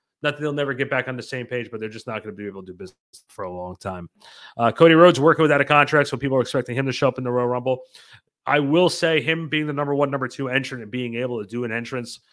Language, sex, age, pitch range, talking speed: English, male, 30-49, 115-145 Hz, 300 wpm